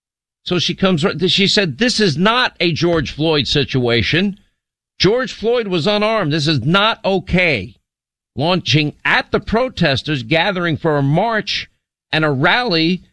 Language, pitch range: English, 125-185 Hz